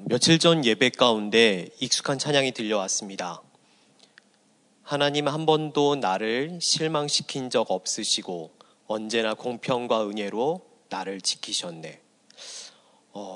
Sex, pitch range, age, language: male, 115-160 Hz, 40-59, Korean